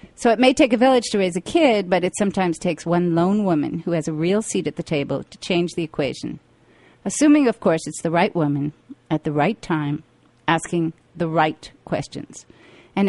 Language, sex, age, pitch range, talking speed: English, female, 40-59, 160-200 Hz, 205 wpm